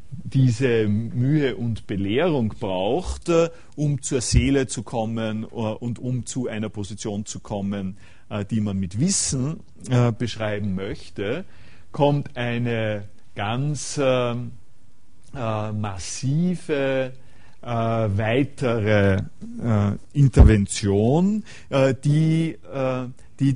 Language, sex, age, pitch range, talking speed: German, male, 50-69, 105-130 Hz, 80 wpm